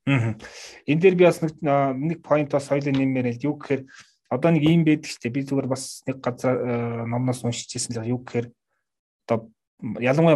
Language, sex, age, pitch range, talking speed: Russian, male, 30-49, 120-145 Hz, 70 wpm